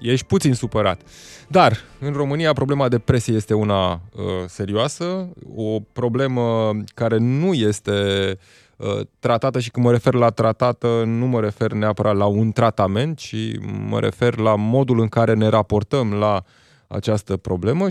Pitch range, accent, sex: 100-120 Hz, native, male